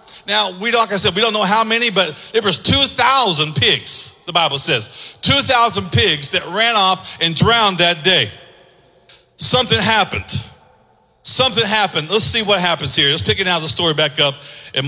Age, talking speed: 40-59, 190 wpm